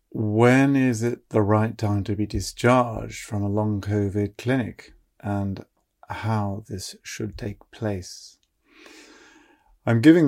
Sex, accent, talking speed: male, British, 130 wpm